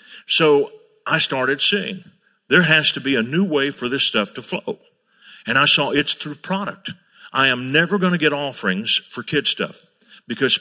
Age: 50-69